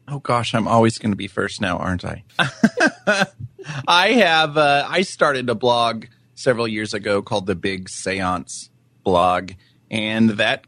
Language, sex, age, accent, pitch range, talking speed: English, male, 30-49, American, 90-120 Hz, 155 wpm